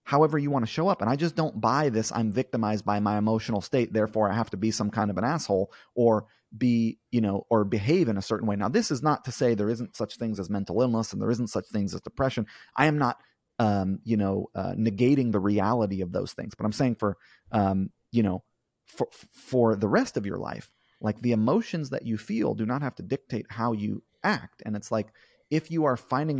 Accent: American